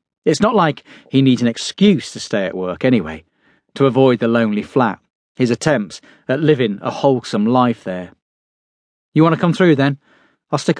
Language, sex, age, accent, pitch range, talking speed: English, male, 40-59, British, 95-140 Hz, 185 wpm